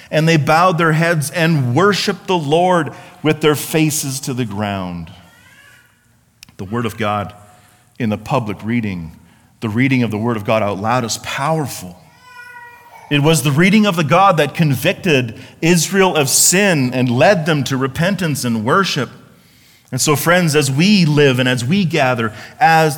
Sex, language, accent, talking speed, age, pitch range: male, English, American, 165 wpm, 40-59, 120-170 Hz